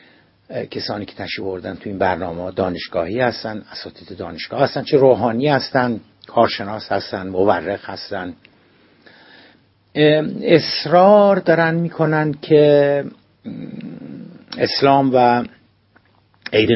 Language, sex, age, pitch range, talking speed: Persian, male, 60-79, 100-130 Hz, 95 wpm